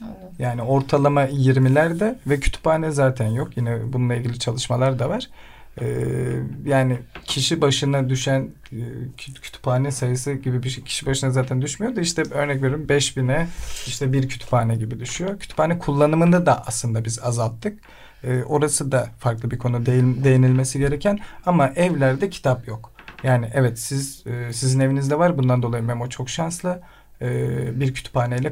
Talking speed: 145 wpm